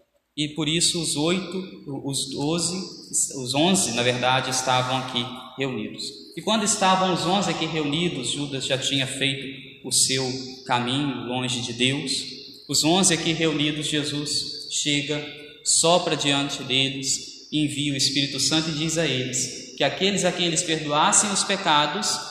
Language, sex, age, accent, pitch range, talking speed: Portuguese, male, 20-39, Brazilian, 135-160 Hz, 150 wpm